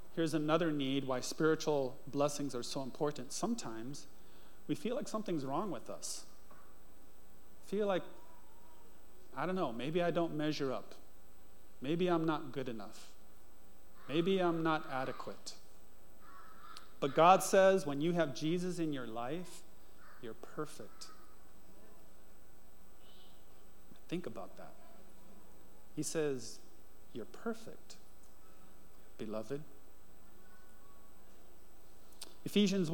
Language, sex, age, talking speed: English, male, 40-59, 105 wpm